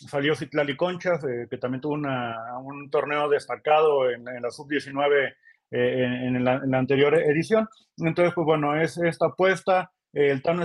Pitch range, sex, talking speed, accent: 135-170 Hz, male, 180 wpm, Mexican